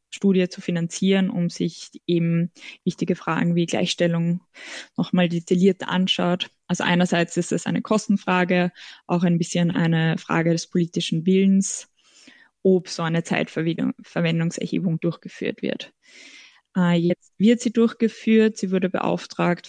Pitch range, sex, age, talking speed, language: 170-190 Hz, female, 20-39, 120 wpm, German